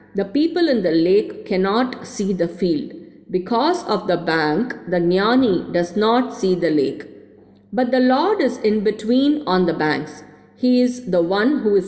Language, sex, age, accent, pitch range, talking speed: English, female, 50-69, Indian, 170-240 Hz, 175 wpm